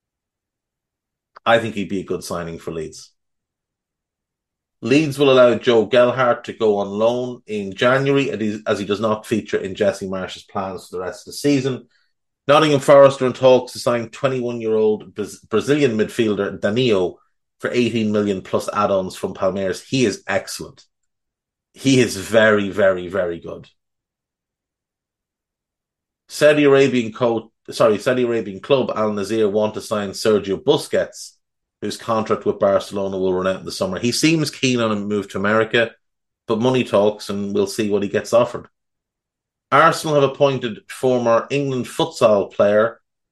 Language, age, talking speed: English, 30-49, 150 wpm